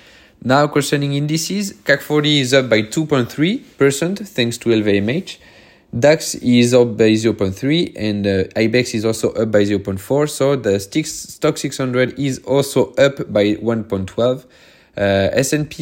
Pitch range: 110-140 Hz